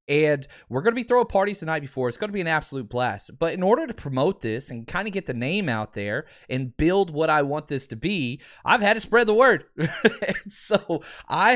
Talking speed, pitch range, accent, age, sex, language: 245 wpm, 120-170 Hz, American, 20-39, male, English